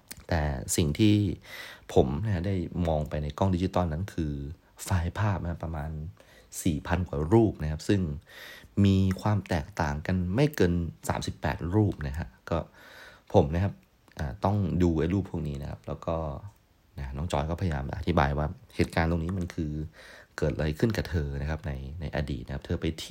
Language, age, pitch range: Thai, 30-49, 75-95 Hz